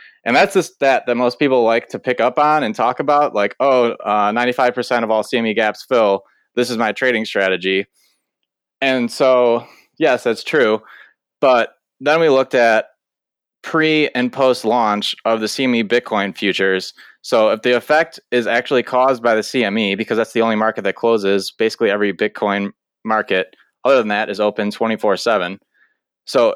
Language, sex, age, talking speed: English, male, 20-39, 175 wpm